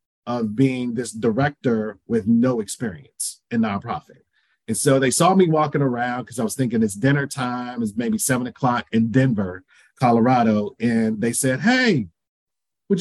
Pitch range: 125-175 Hz